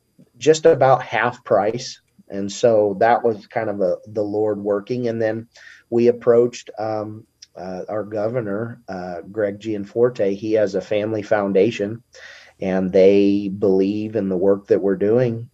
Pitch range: 95-115 Hz